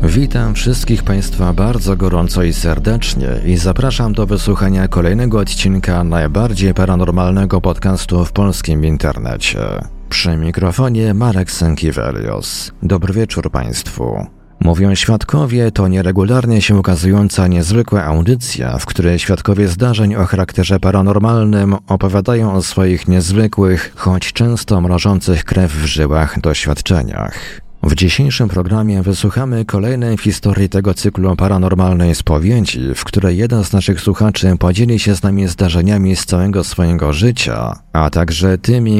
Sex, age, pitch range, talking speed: male, 40-59, 90-105 Hz, 125 wpm